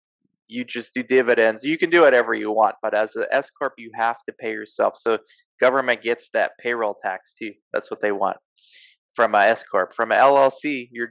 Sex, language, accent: male, English, American